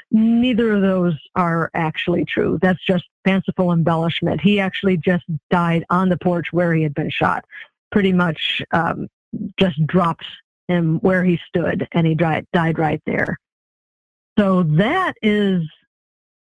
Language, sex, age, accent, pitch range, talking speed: English, female, 50-69, American, 175-210 Hz, 140 wpm